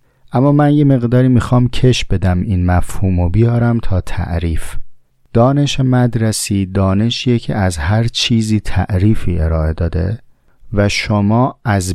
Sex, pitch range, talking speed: male, 90-120 Hz, 130 wpm